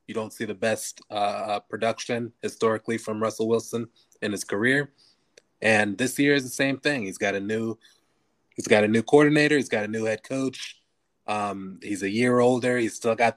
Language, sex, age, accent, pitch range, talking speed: English, male, 20-39, American, 105-120 Hz, 200 wpm